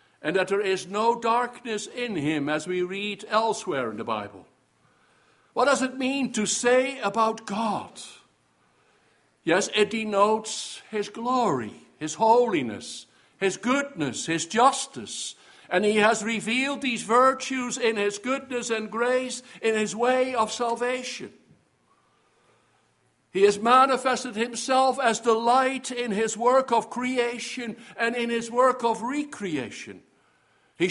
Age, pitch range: 60-79, 205-250 Hz